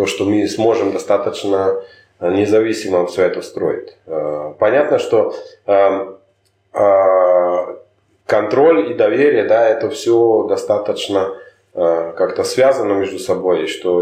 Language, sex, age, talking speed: Russian, male, 20-39, 100 wpm